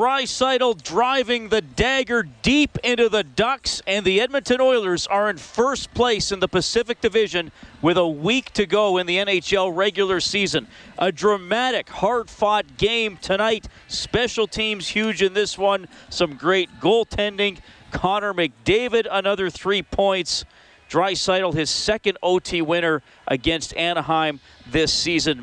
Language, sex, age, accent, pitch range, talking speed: English, male, 40-59, American, 160-205 Hz, 135 wpm